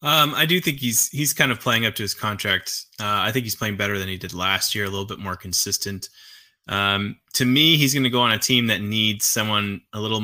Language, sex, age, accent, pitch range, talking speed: English, male, 20-39, American, 100-120 Hz, 260 wpm